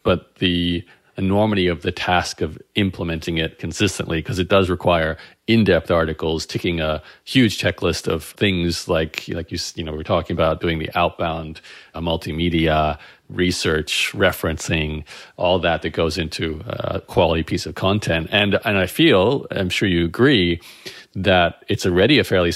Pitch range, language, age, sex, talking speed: 85-95 Hz, English, 40-59, male, 155 wpm